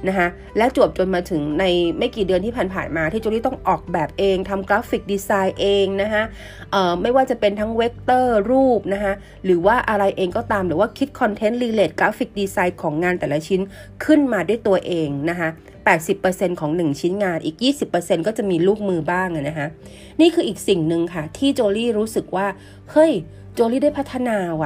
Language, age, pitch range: Thai, 30-49, 175-240 Hz